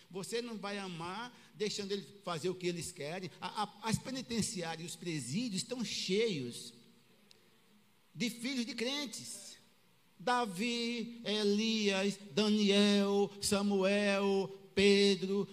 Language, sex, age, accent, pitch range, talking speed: Portuguese, male, 50-69, Brazilian, 185-220 Hz, 110 wpm